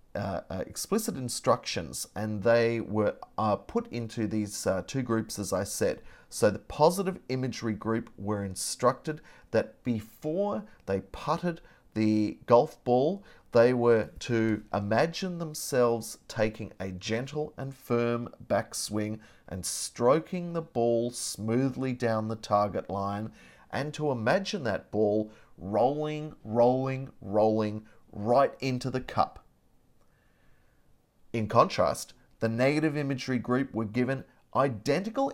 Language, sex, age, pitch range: English, male, 30-49, 110-140 Hz